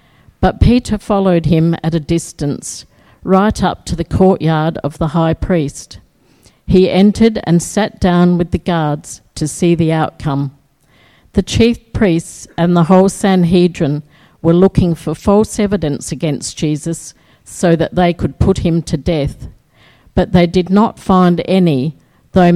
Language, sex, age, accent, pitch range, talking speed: English, female, 50-69, Australian, 160-190 Hz, 150 wpm